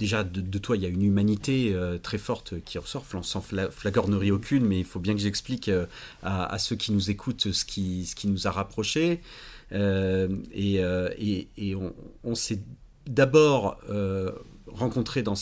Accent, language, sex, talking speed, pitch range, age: French, French, male, 200 wpm, 95-120 Hz, 40-59